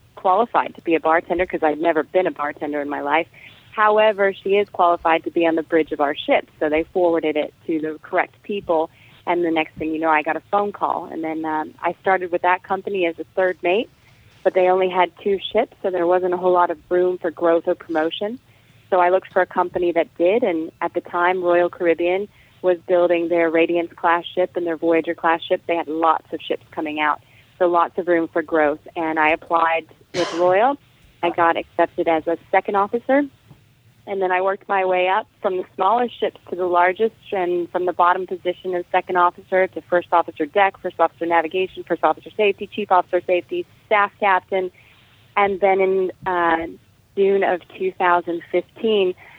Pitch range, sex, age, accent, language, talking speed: 160-185 Hz, female, 30-49, American, English, 205 wpm